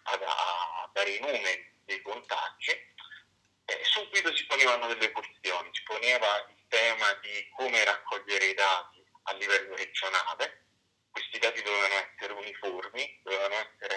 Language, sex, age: Italian, male, 40-59